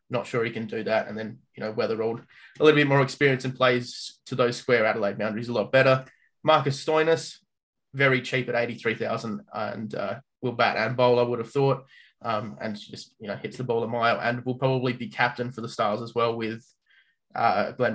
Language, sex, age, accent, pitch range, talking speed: English, male, 20-39, Australian, 115-135 Hz, 220 wpm